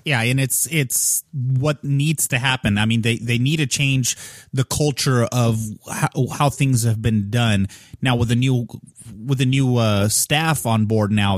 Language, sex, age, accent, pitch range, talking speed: English, male, 30-49, American, 115-140 Hz, 190 wpm